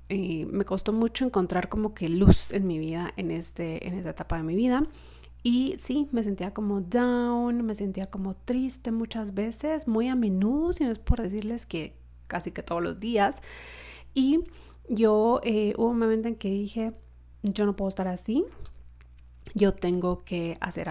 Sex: female